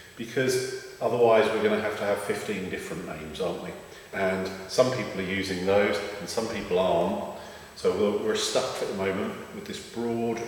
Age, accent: 40-59, British